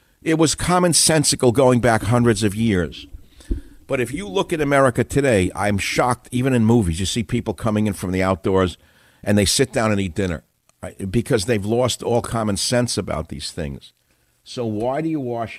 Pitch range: 90-120 Hz